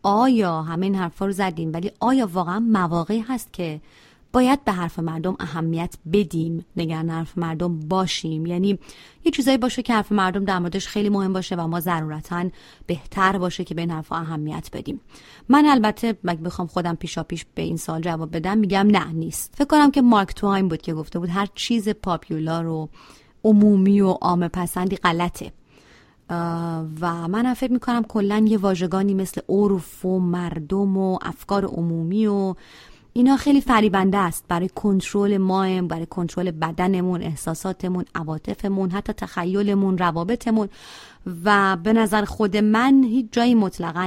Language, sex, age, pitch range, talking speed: Persian, female, 30-49, 170-205 Hz, 160 wpm